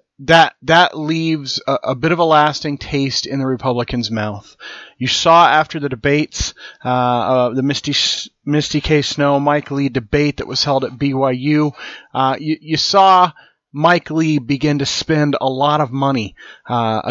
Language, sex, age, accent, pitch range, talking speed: English, male, 30-49, American, 130-160 Hz, 170 wpm